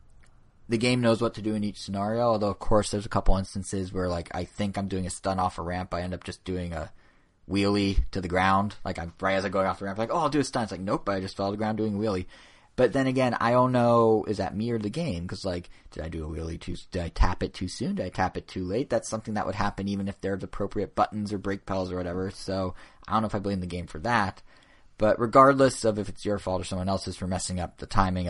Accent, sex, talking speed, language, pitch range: American, male, 295 wpm, English, 90-105 Hz